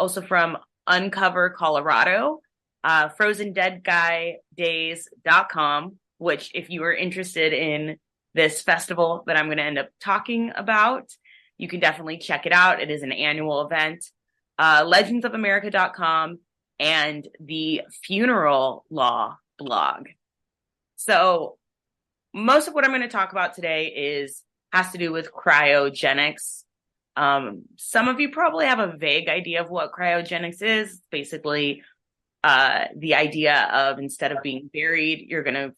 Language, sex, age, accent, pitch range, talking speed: English, female, 20-39, American, 150-185 Hz, 135 wpm